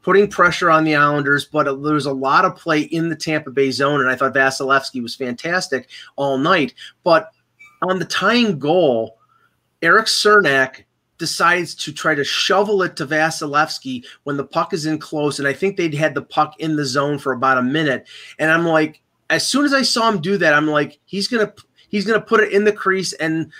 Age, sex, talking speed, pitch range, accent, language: 30-49, male, 215 wpm, 135-165 Hz, American, English